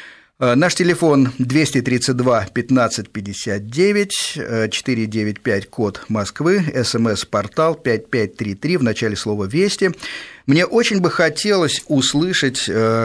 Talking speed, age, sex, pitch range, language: 85 wpm, 50-69, male, 110-155 Hz, Russian